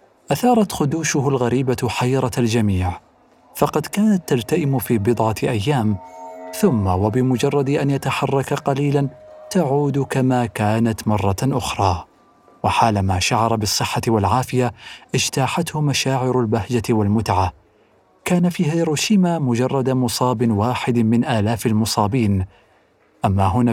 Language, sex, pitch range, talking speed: Arabic, male, 115-145 Hz, 100 wpm